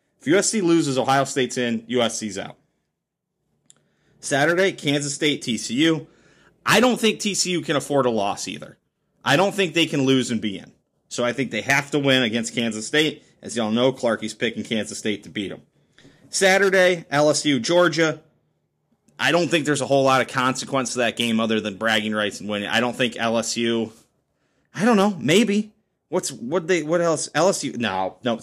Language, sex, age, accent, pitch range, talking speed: English, male, 30-49, American, 110-155 Hz, 185 wpm